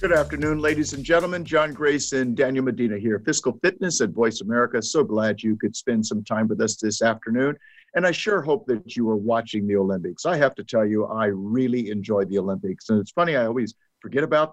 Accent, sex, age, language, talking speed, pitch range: American, male, 50-69, English, 220 wpm, 110-155 Hz